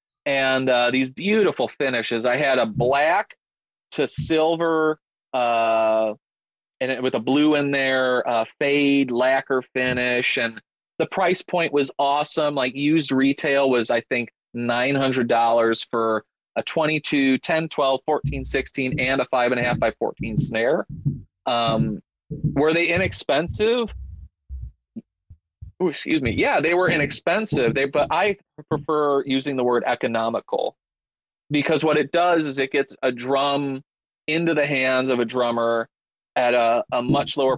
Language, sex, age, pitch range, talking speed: English, male, 30-49, 115-150 Hz, 145 wpm